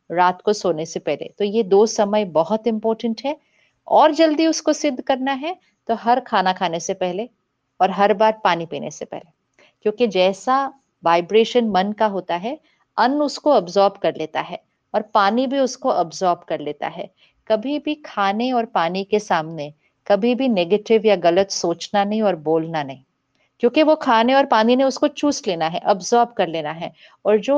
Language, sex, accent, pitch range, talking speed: Hindi, female, native, 175-235 Hz, 185 wpm